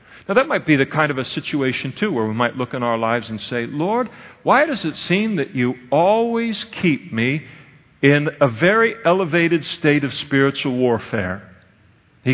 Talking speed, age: 185 wpm, 50-69